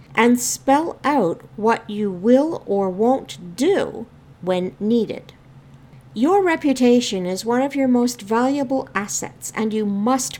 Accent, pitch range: American, 185-260 Hz